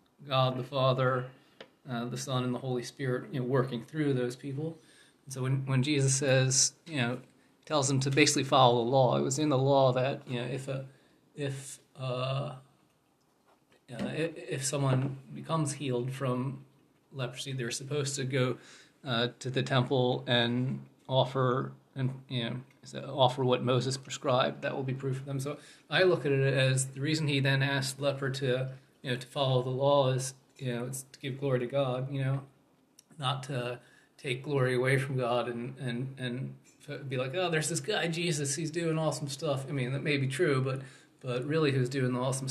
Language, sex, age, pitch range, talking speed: English, male, 30-49, 125-140 Hz, 195 wpm